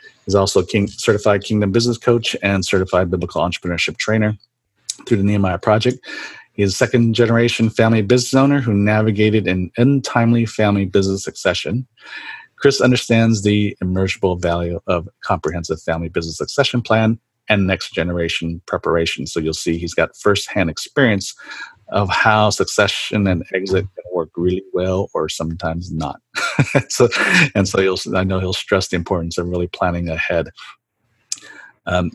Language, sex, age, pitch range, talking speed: English, male, 40-59, 90-115 Hz, 145 wpm